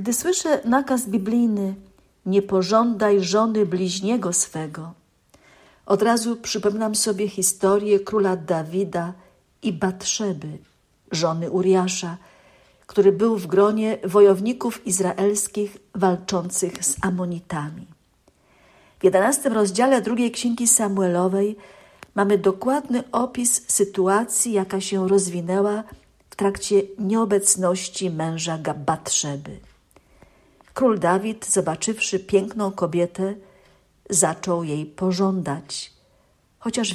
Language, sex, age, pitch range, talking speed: Polish, female, 50-69, 180-220 Hz, 90 wpm